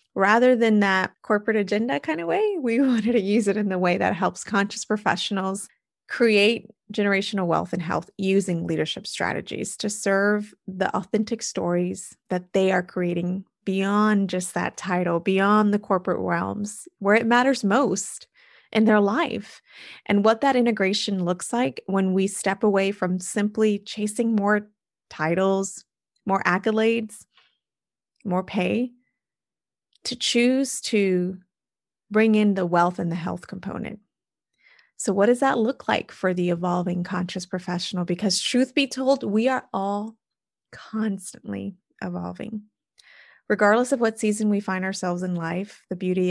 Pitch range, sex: 185-225 Hz, female